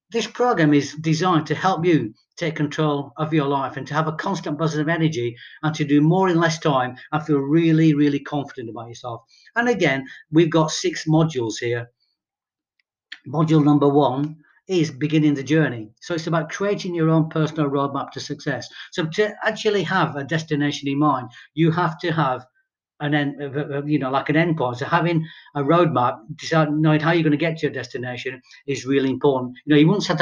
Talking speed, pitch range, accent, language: 195 wpm, 140-165 Hz, British, English